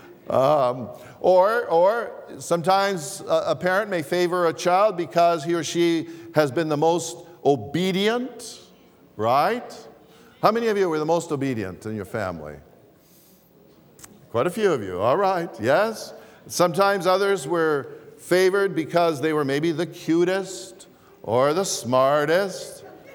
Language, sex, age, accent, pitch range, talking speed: English, male, 50-69, American, 145-185 Hz, 135 wpm